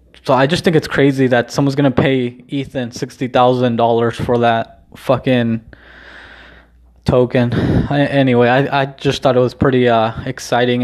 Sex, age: male, 20-39